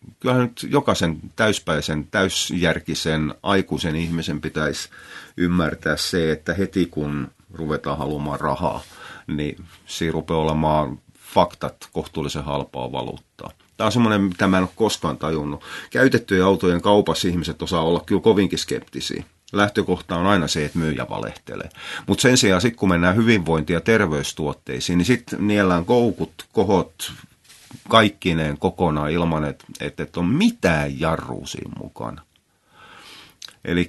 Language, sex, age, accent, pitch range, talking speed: Finnish, male, 30-49, native, 80-100 Hz, 130 wpm